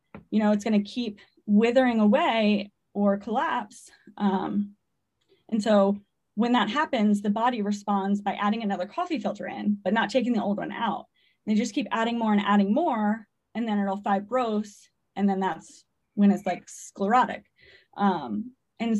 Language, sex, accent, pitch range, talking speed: English, female, American, 195-240 Hz, 165 wpm